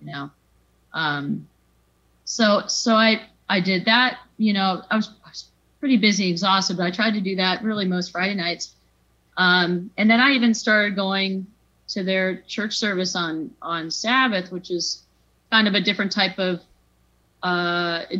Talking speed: 160 wpm